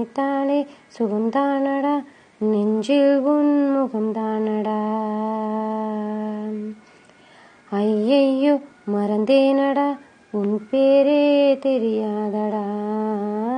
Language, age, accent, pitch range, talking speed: Tamil, 20-39, native, 245-315 Hz, 45 wpm